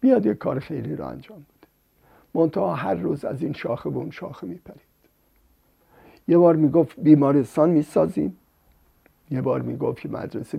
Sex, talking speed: male, 145 wpm